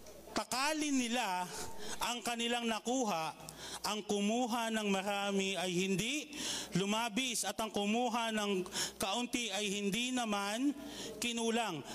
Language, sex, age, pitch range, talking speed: Filipino, male, 40-59, 165-220 Hz, 105 wpm